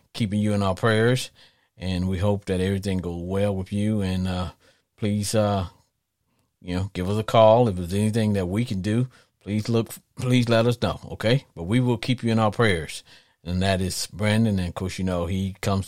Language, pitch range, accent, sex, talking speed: English, 95-115 Hz, American, male, 215 wpm